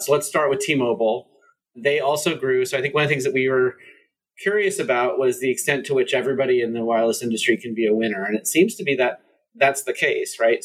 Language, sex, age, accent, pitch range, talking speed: English, male, 30-49, American, 120-180 Hz, 250 wpm